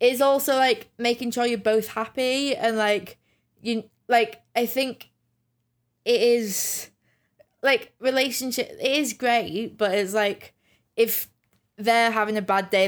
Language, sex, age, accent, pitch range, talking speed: English, female, 20-39, British, 195-230 Hz, 140 wpm